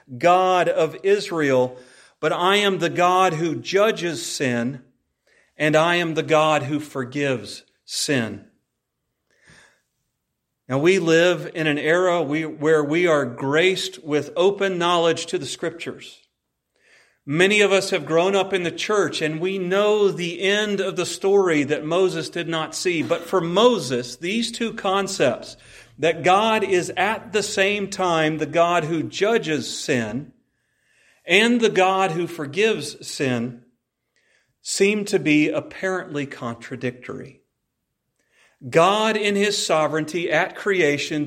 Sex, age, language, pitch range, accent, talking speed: male, 40-59, English, 150-195 Hz, American, 135 wpm